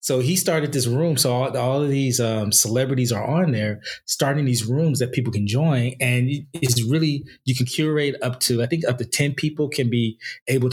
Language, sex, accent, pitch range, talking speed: English, male, American, 110-140 Hz, 220 wpm